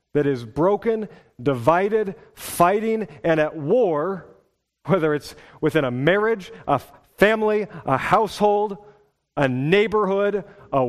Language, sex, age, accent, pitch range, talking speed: English, male, 40-59, American, 110-170 Hz, 110 wpm